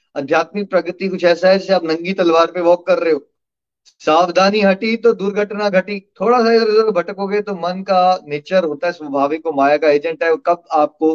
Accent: native